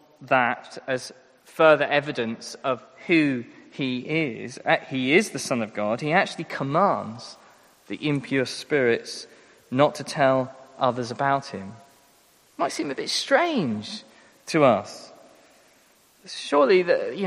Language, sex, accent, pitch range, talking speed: English, male, British, 135-205 Hz, 125 wpm